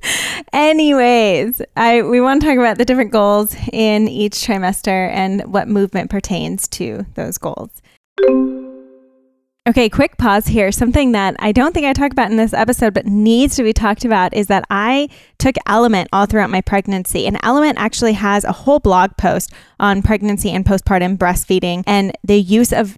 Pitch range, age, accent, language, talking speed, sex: 205-250 Hz, 20-39, American, English, 175 wpm, female